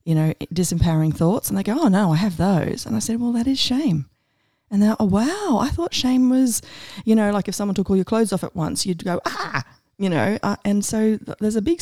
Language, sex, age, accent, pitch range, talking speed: English, female, 30-49, Australian, 155-200 Hz, 255 wpm